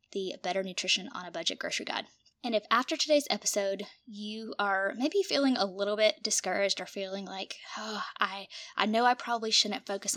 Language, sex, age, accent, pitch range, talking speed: English, female, 10-29, American, 190-225 Hz, 190 wpm